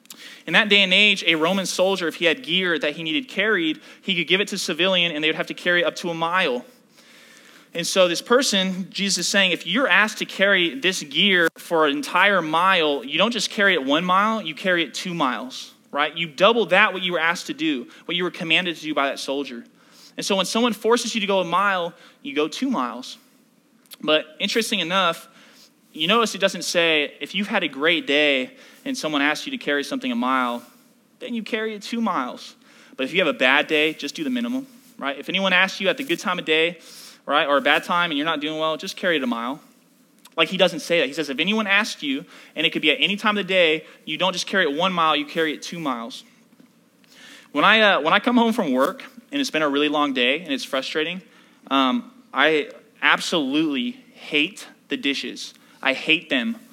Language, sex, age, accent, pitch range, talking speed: English, male, 20-39, American, 165-250 Hz, 235 wpm